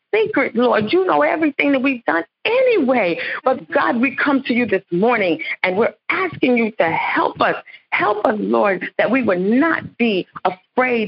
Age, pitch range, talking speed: 50-69, 205-275 Hz, 180 wpm